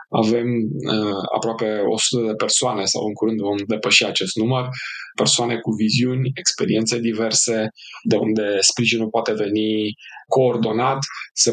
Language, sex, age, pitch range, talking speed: Romanian, male, 20-39, 105-120 Hz, 125 wpm